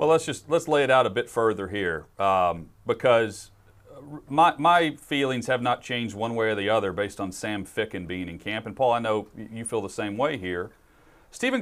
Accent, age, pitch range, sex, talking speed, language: American, 40-59, 115-160 Hz, male, 215 wpm, English